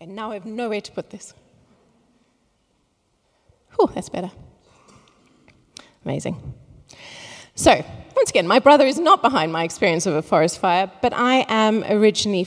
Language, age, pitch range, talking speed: English, 30-49, 185-215 Hz, 145 wpm